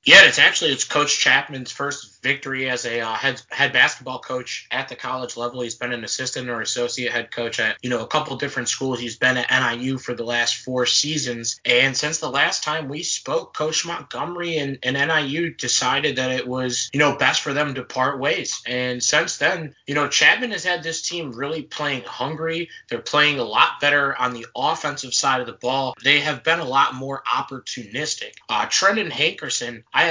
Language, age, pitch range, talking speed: English, 20-39, 125-155 Hz, 205 wpm